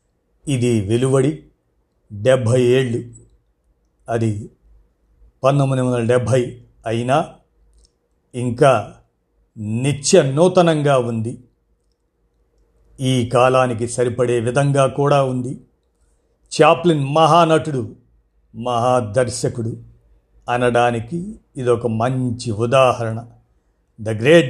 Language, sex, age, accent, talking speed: Telugu, male, 50-69, native, 70 wpm